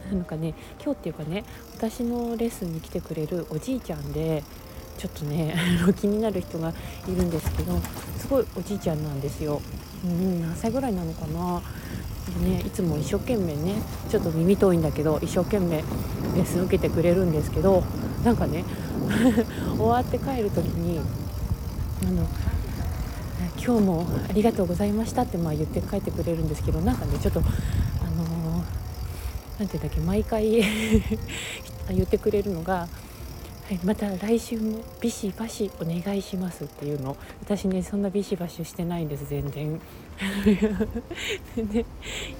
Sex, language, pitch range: female, Japanese, 150-205 Hz